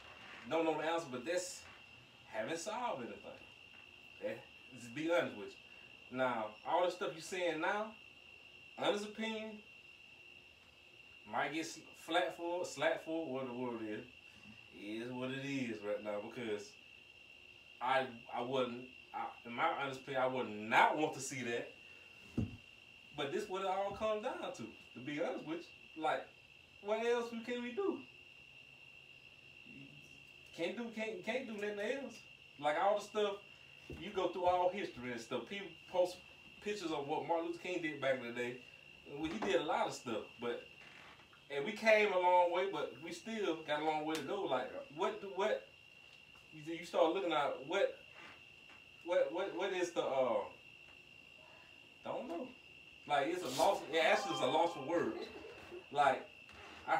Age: 30-49